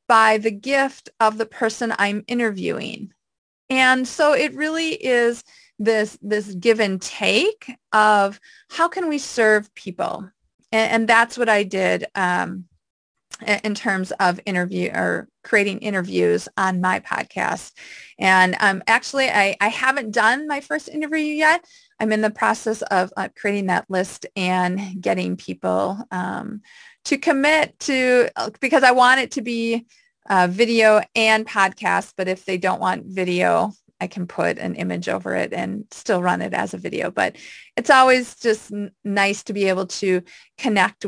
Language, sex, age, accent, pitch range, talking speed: English, female, 30-49, American, 190-255 Hz, 155 wpm